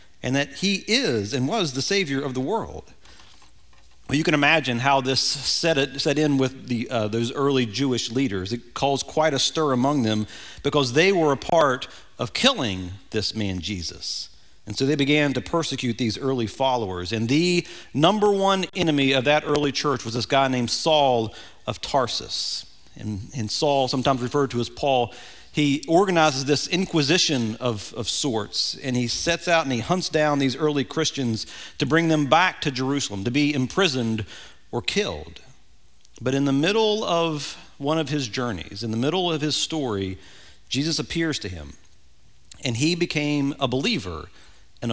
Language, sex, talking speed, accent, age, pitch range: English, male, 175 wpm, American, 40-59, 115-150 Hz